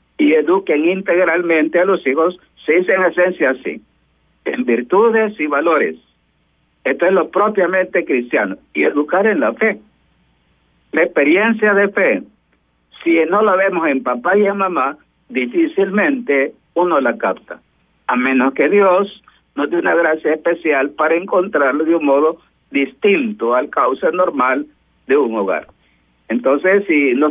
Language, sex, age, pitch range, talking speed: Spanish, male, 50-69, 150-195 Hz, 145 wpm